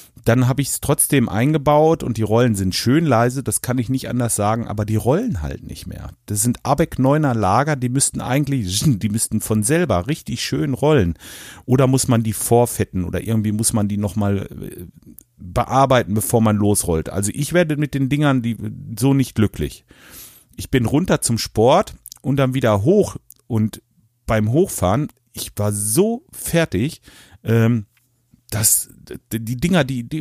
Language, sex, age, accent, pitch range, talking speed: German, male, 40-59, German, 105-140 Hz, 170 wpm